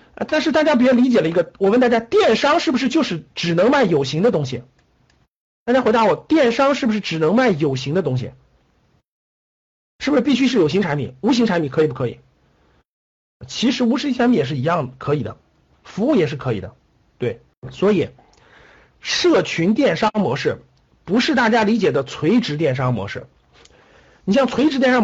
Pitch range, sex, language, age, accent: 170-245 Hz, male, Chinese, 50-69, native